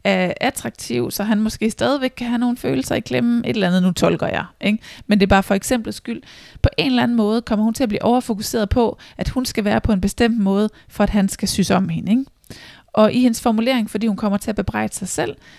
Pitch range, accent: 185-225 Hz, native